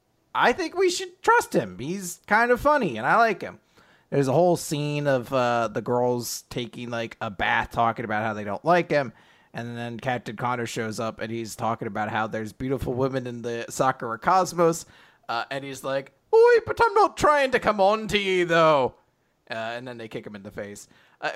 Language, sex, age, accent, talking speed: English, male, 30-49, American, 215 wpm